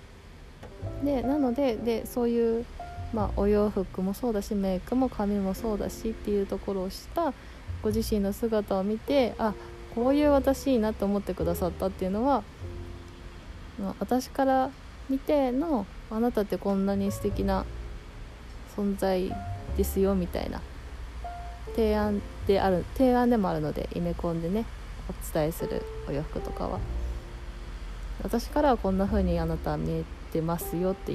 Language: Japanese